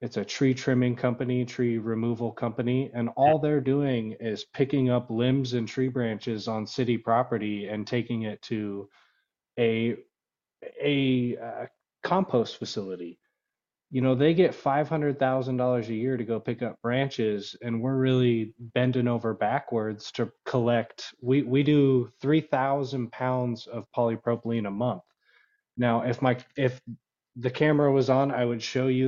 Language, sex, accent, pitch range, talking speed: English, male, American, 115-130 Hz, 155 wpm